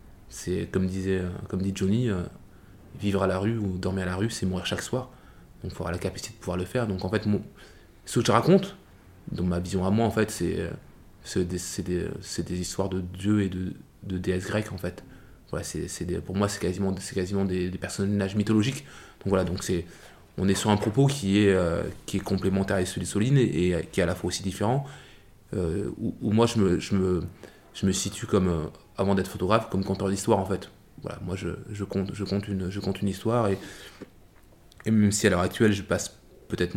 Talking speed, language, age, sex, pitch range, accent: 240 wpm, French, 20-39, male, 90-105 Hz, French